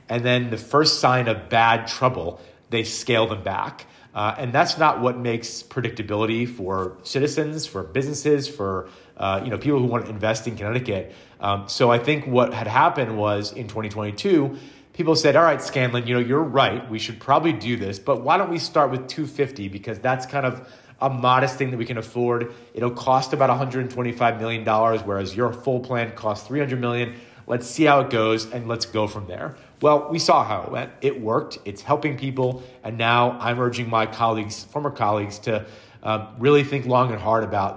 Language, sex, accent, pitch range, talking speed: English, male, American, 110-130 Hz, 195 wpm